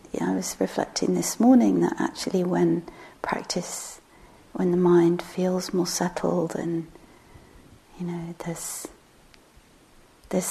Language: English